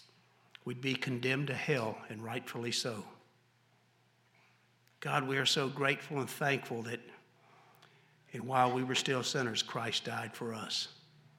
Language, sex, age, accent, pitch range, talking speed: English, male, 60-79, American, 120-140 Hz, 135 wpm